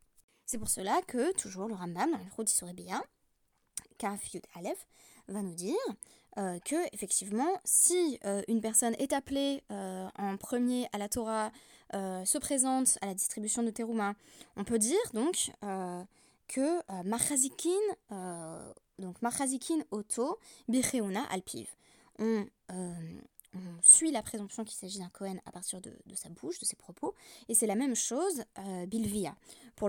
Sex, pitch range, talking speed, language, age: female, 195-270 Hz, 155 wpm, French, 20-39